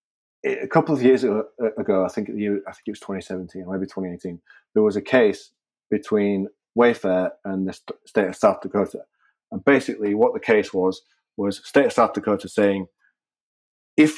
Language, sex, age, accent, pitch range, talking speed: English, male, 30-49, British, 95-110 Hz, 180 wpm